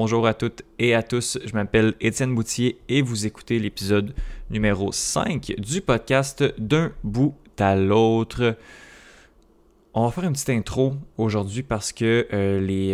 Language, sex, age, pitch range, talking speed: French, male, 20-39, 100-120 Hz, 155 wpm